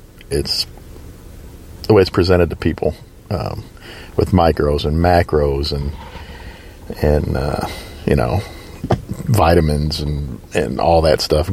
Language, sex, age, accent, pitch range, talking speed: English, male, 40-59, American, 80-100 Hz, 120 wpm